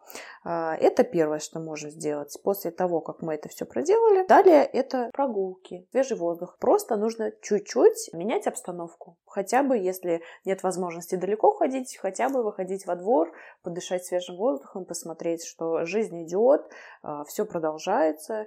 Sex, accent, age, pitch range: female, native, 20-39, 175-225 Hz